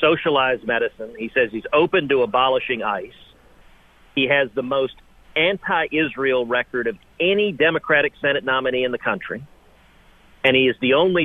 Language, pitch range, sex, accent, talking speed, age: English, 125-160 Hz, male, American, 155 wpm, 40-59